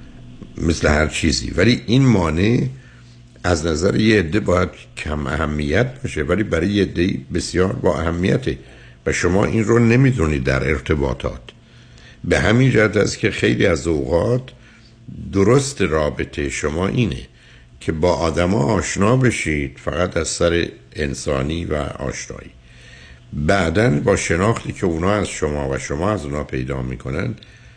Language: Persian